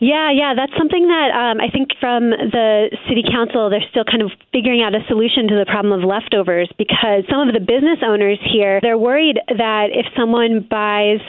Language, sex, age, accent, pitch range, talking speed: English, female, 20-39, American, 200-235 Hz, 200 wpm